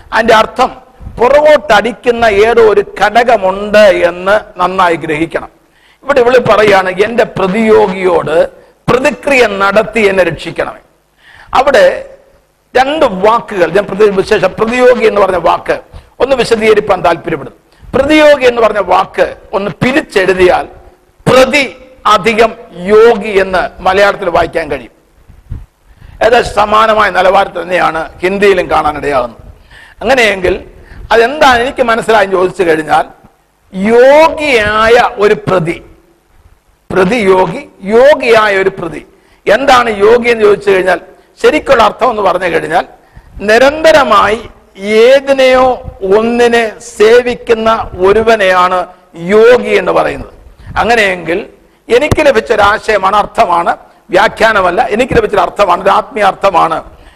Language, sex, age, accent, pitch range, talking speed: English, male, 50-69, Indian, 190-245 Hz, 85 wpm